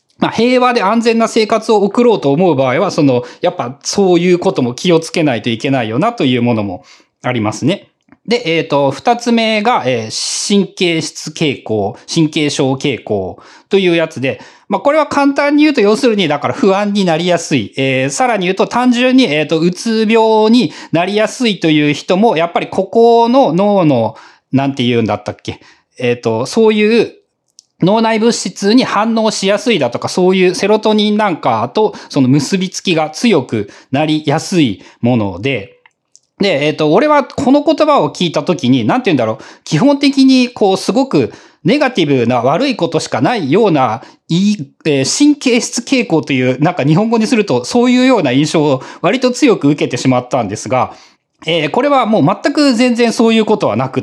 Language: Japanese